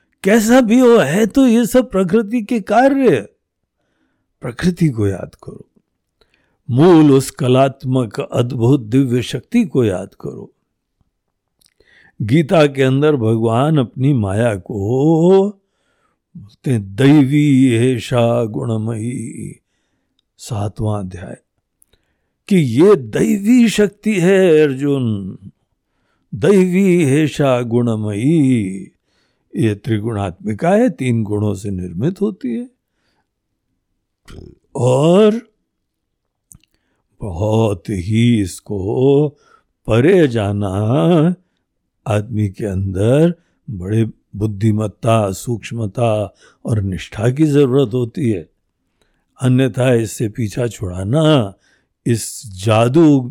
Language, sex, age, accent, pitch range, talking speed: Hindi, male, 60-79, native, 105-155 Hz, 90 wpm